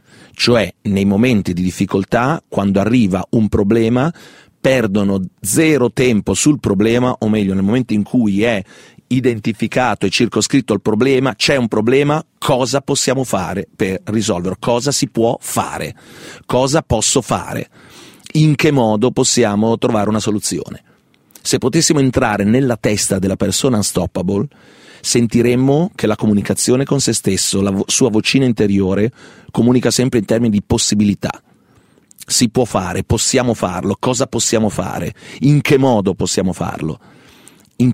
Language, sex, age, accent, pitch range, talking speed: Italian, male, 40-59, native, 105-130 Hz, 140 wpm